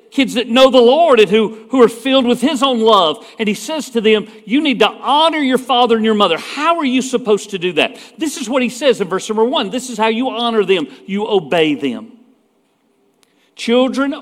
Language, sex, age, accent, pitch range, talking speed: English, male, 50-69, American, 210-265 Hz, 230 wpm